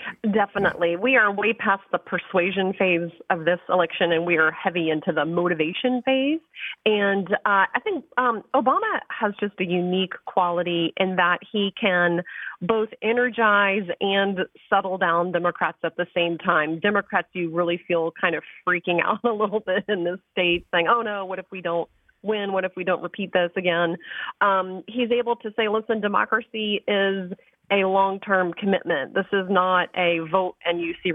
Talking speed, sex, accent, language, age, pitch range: 175 wpm, female, American, English, 30-49, 175-205 Hz